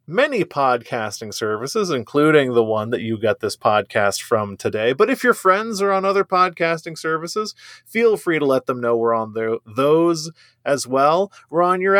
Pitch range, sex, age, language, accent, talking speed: 120-180 Hz, male, 30-49, English, American, 180 wpm